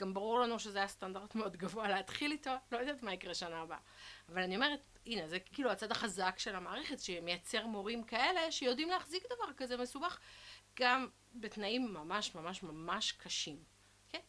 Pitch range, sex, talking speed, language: 185-235 Hz, female, 170 wpm, Hebrew